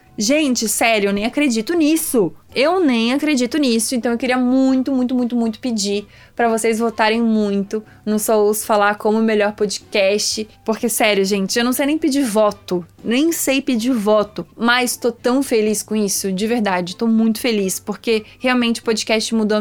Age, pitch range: 20-39, 210-240 Hz